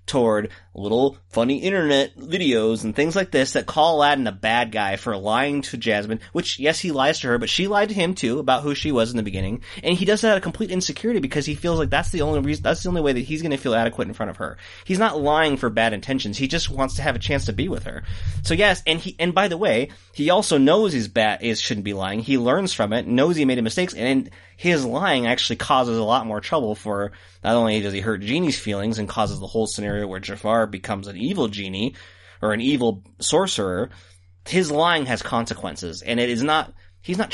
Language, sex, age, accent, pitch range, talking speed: English, male, 30-49, American, 100-150 Hz, 245 wpm